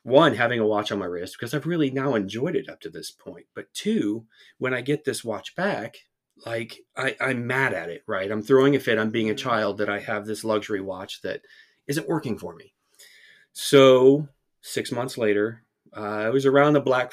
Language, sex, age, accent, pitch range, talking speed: English, male, 30-49, American, 105-135 Hz, 210 wpm